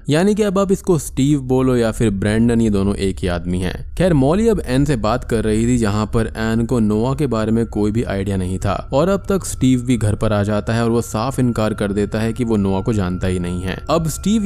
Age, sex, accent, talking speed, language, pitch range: 20-39, male, native, 270 wpm, Hindi, 105-135 Hz